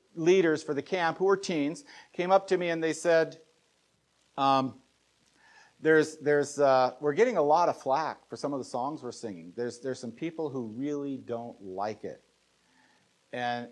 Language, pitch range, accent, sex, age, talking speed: English, 130-165 Hz, American, male, 50-69, 180 wpm